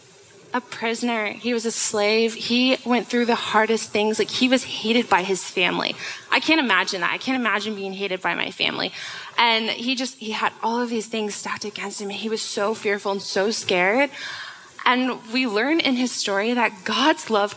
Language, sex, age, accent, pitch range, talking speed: English, female, 20-39, American, 205-250 Hz, 200 wpm